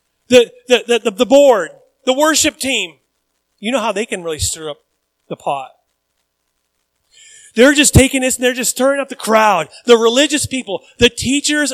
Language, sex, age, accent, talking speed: English, male, 30-49, American, 175 wpm